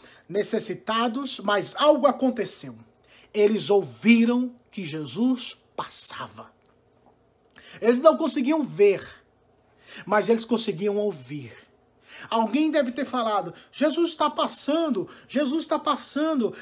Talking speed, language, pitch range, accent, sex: 100 wpm, Portuguese, 205-290 Hz, Brazilian, male